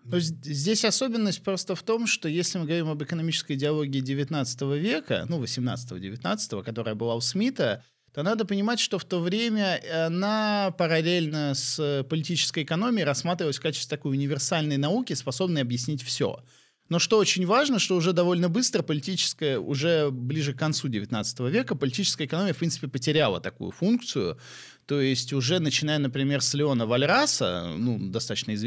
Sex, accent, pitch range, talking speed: male, native, 130-180 Hz, 155 wpm